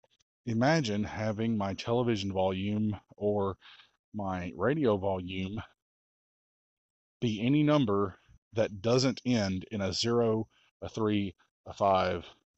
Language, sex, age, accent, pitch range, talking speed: English, male, 30-49, American, 95-115 Hz, 105 wpm